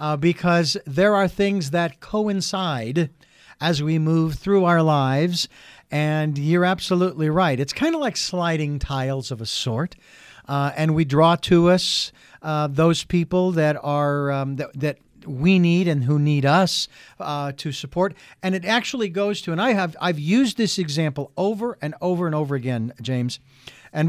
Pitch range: 150-195 Hz